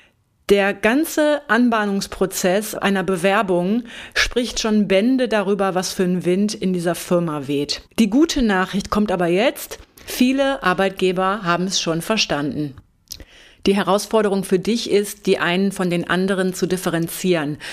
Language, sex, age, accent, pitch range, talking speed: German, female, 30-49, German, 175-210 Hz, 140 wpm